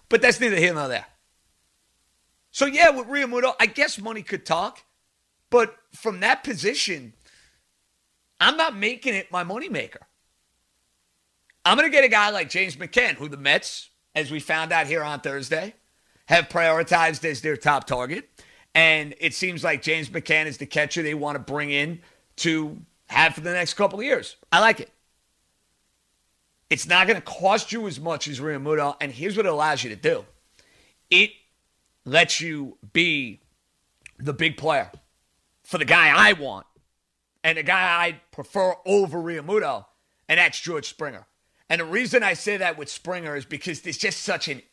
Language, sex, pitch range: English, male, 145-190 Hz